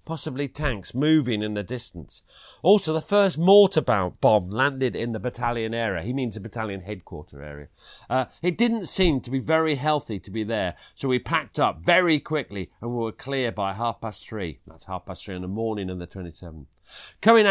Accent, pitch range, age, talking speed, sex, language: British, 110-160 Hz, 40-59, 200 wpm, male, English